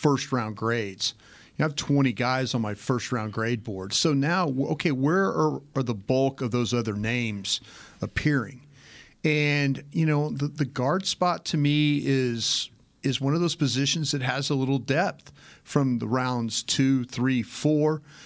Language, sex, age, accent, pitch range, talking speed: English, male, 40-59, American, 120-145 Hz, 165 wpm